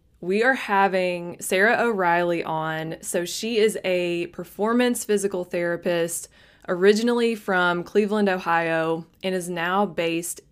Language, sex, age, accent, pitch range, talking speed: English, female, 20-39, American, 170-200 Hz, 120 wpm